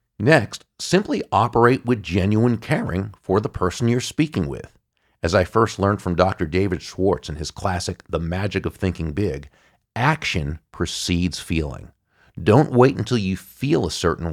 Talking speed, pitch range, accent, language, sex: 160 wpm, 90-120 Hz, American, English, male